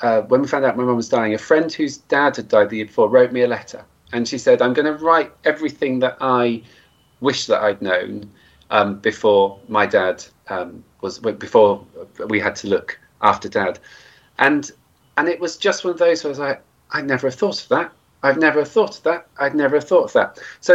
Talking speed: 230 wpm